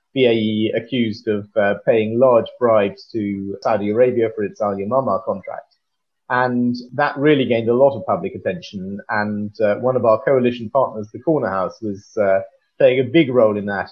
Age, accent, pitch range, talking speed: 30-49, British, 110-140 Hz, 175 wpm